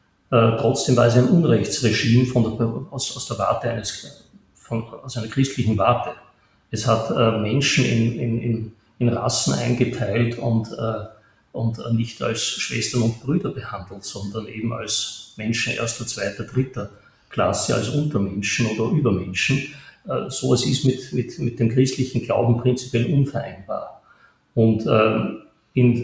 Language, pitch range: German, 115-130 Hz